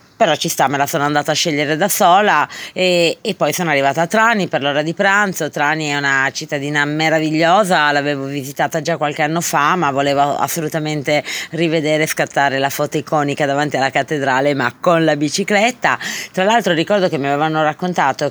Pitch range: 140-180 Hz